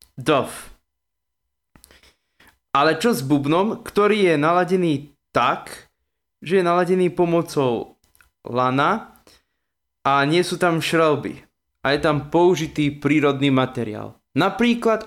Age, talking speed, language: 20-39, 105 wpm, Slovak